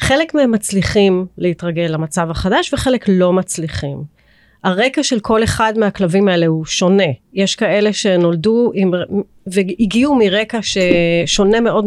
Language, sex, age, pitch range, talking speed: Hebrew, female, 30-49, 180-215 Hz, 125 wpm